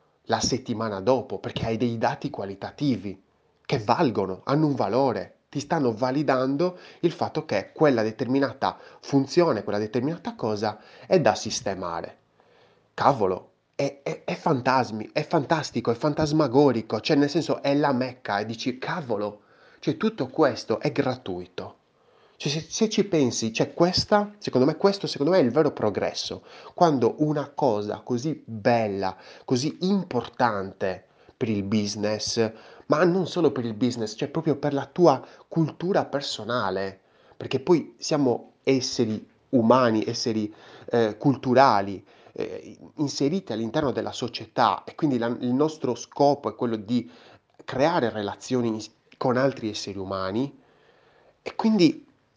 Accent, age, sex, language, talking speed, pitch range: native, 30-49, male, Italian, 135 wpm, 110-150 Hz